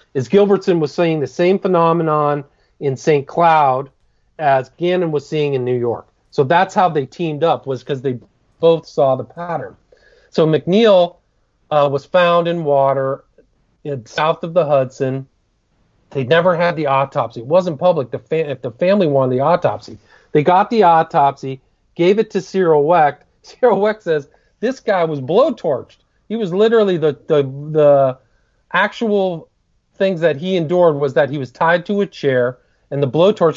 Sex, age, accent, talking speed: male, 40-59, American, 175 wpm